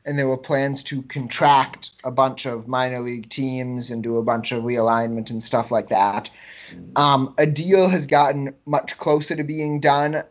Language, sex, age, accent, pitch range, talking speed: English, male, 20-39, American, 125-150 Hz, 185 wpm